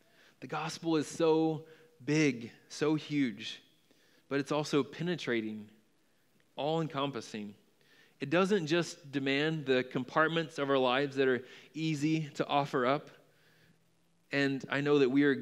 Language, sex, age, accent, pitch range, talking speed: English, male, 20-39, American, 120-145 Hz, 130 wpm